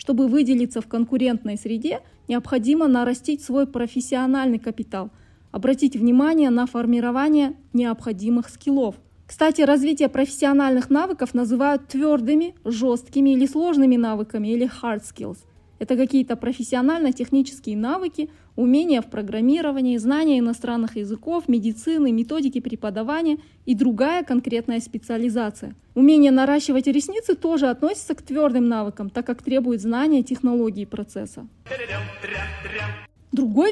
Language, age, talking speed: Russian, 20-39, 110 wpm